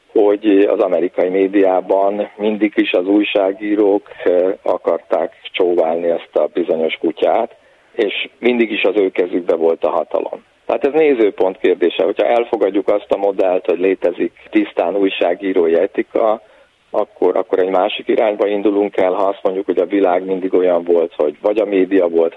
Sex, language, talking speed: male, Hungarian, 155 wpm